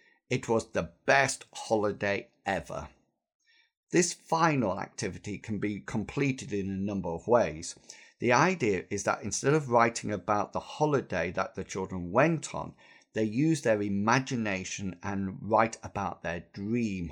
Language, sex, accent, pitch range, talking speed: English, male, British, 100-145 Hz, 145 wpm